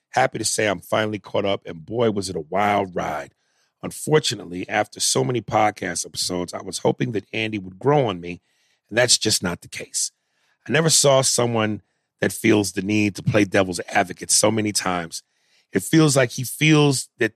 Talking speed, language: 195 wpm, English